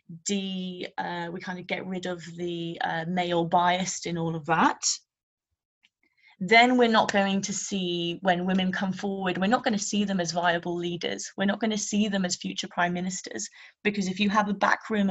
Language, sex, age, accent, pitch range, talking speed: English, female, 20-39, British, 180-215 Hz, 205 wpm